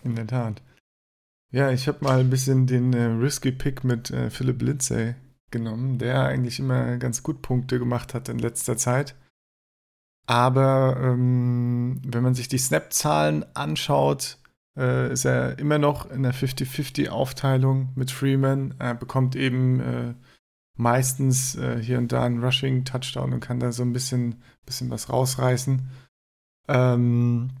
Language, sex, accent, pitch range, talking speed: German, male, German, 120-130 Hz, 145 wpm